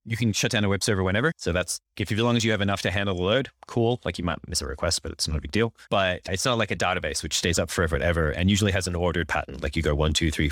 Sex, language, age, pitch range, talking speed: male, English, 30-49, 80-105 Hz, 335 wpm